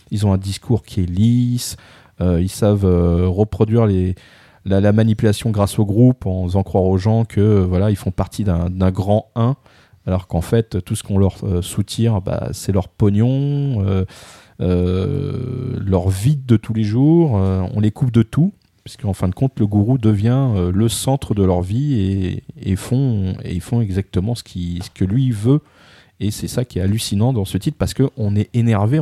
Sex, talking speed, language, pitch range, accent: male, 210 wpm, French, 95-125 Hz, French